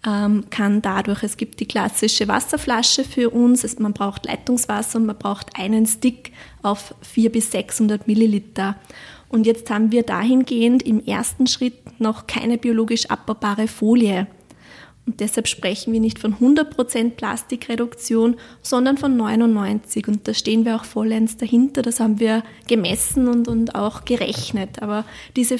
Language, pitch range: German, 215-245 Hz